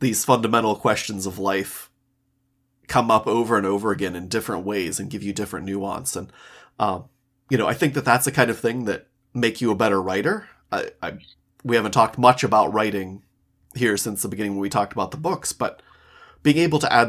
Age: 30-49